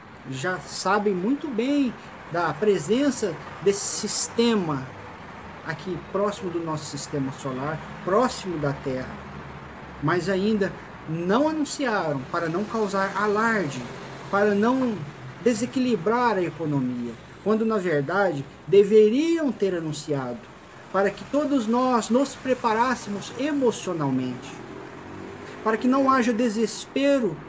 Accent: Brazilian